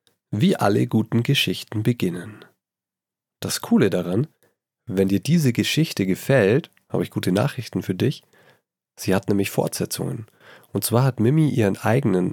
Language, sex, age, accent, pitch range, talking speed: German, male, 40-59, German, 105-140 Hz, 140 wpm